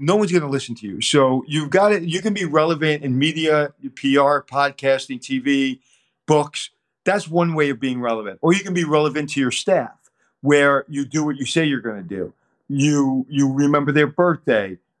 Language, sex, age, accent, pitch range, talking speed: English, male, 40-59, American, 130-160 Hz, 200 wpm